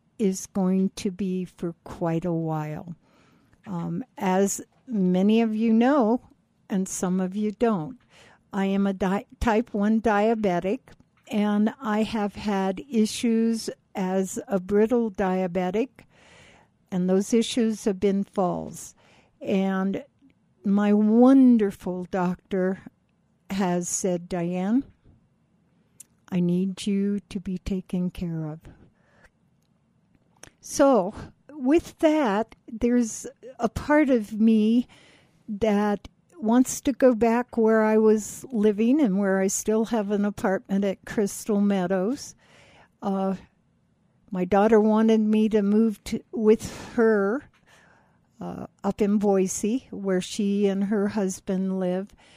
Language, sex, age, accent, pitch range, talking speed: English, female, 60-79, American, 185-220 Hz, 115 wpm